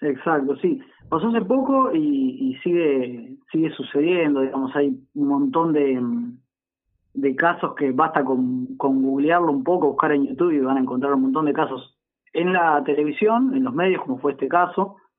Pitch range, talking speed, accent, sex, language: 135-180 Hz, 180 wpm, Argentinian, male, Spanish